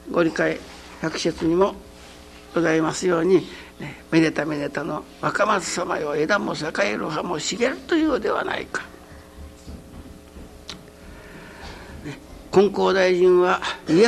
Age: 60-79